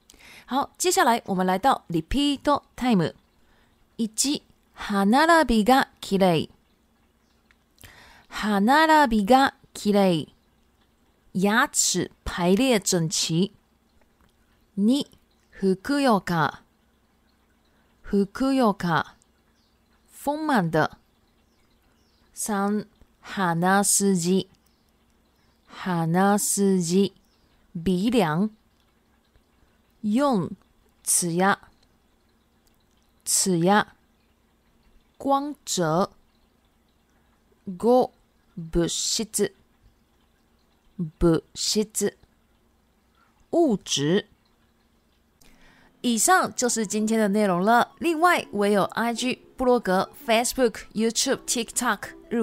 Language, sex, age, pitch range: Japanese, female, 30-49, 190-245 Hz